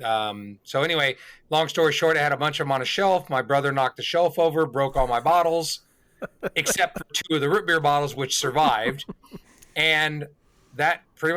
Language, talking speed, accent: English, 200 wpm, American